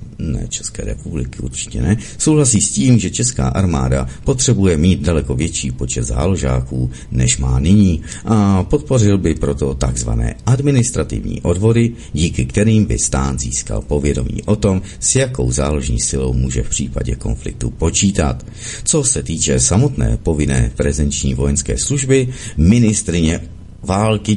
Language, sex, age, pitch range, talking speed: Czech, male, 50-69, 70-110 Hz, 135 wpm